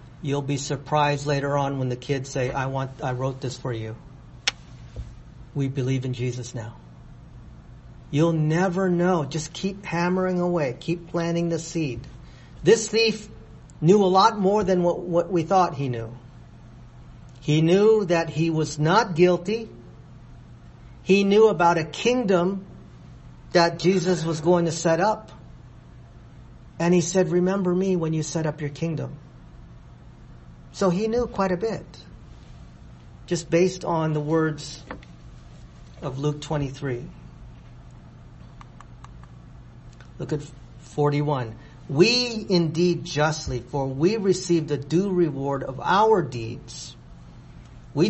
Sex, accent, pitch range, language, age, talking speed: male, American, 135-180 Hz, English, 50-69, 130 wpm